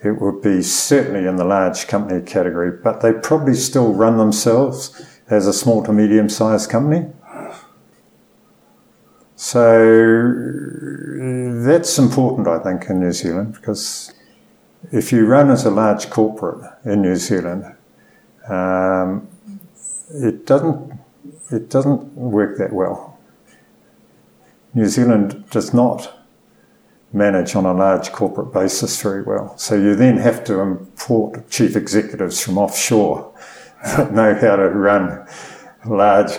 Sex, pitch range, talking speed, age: male, 95-120 Hz, 125 wpm, 50-69